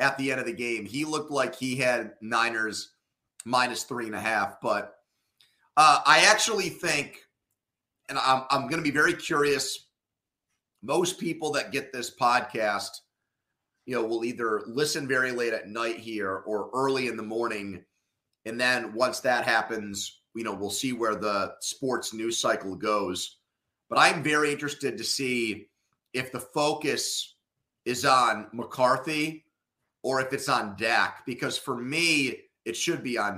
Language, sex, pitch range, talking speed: English, male, 115-145 Hz, 160 wpm